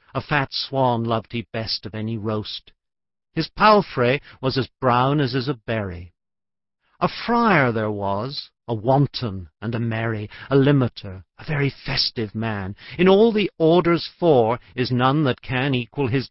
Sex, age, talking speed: male, 50-69, 160 wpm